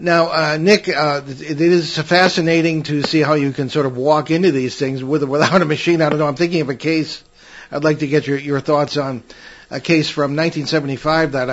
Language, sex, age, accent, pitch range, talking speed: English, male, 50-69, American, 130-160 Hz, 225 wpm